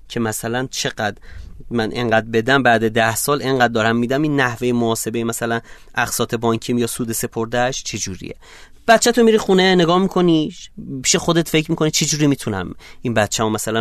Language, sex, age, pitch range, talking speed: Persian, male, 30-49, 115-180 Hz, 165 wpm